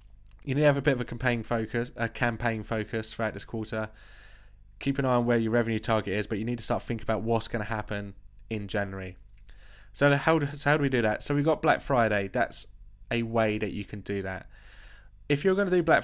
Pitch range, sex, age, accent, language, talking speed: 105-125 Hz, male, 20-39, British, English, 240 wpm